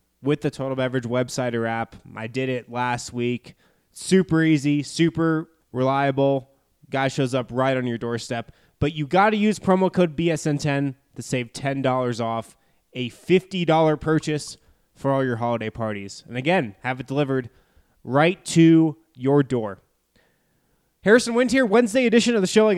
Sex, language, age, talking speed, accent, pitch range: male, English, 20-39, 160 wpm, American, 115-160 Hz